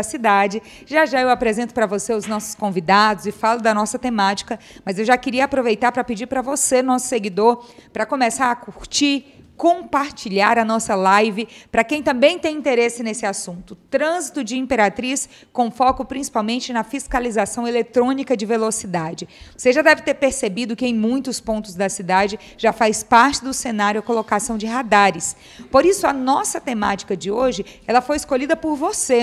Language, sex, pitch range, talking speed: Portuguese, female, 215-265 Hz, 170 wpm